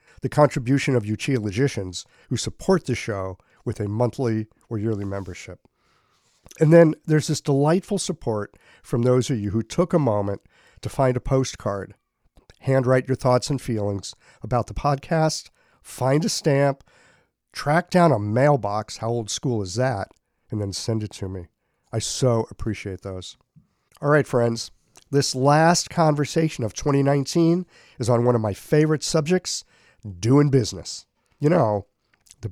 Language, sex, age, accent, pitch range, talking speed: English, male, 50-69, American, 110-145 Hz, 155 wpm